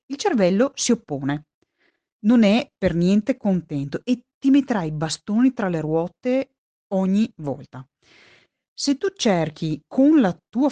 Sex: female